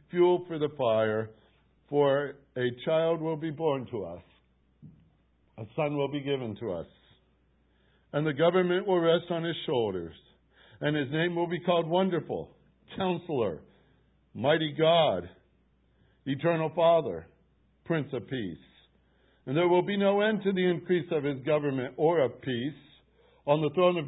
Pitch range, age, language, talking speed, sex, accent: 125-170 Hz, 60-79, English, 150 wpm, male, American